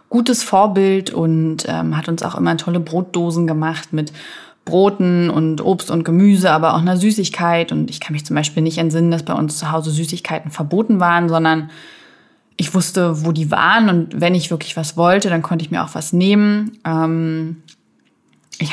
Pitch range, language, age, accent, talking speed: 160-195 Hz, German, 20-39, German, 185 wpm